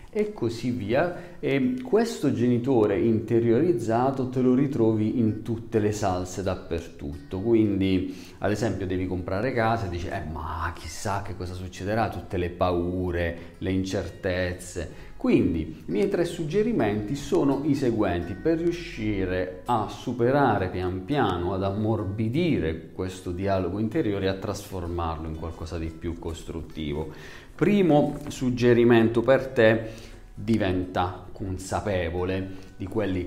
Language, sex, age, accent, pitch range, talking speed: Italian, male, 40-59, native, 90-120 Hz, 125 wpm